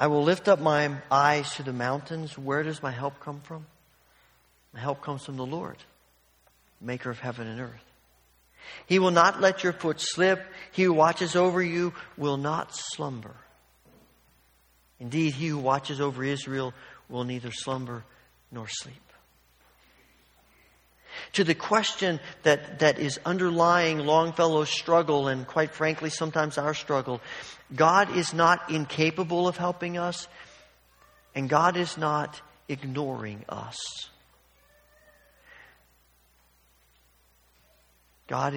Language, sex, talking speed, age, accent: English, male, 125 wpm, 50-69, American